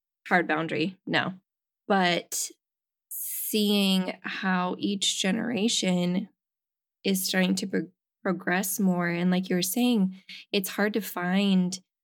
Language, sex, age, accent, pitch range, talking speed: English, female, 10-29, American, 180-200 Hz, 115 wpm